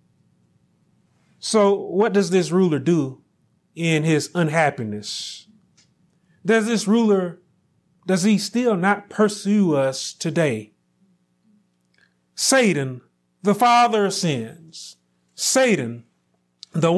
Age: 30-49